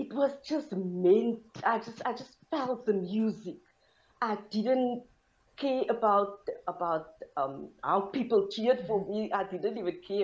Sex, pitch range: female, 170-225 Hz